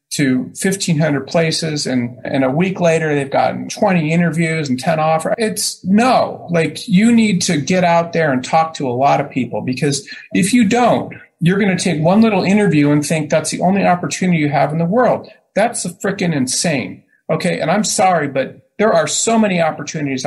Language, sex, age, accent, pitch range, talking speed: English, male, 40-59, American, 130-185 Hz, 200 wpm